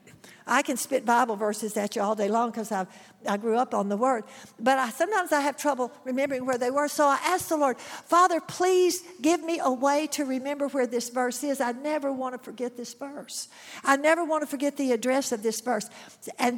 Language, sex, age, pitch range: English, female, 60-79, 210-280 Hz